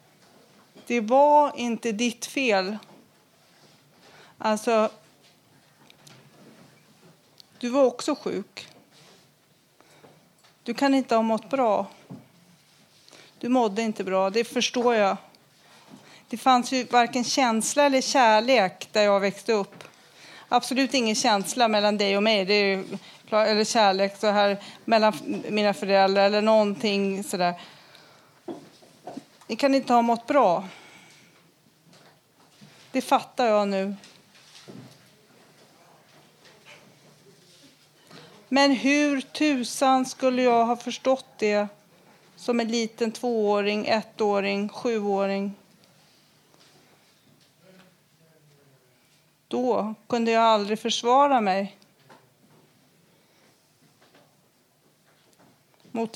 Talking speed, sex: 90 wpm, female